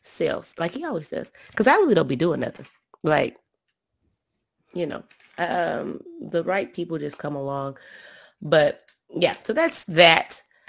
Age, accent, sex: 20-39, American, female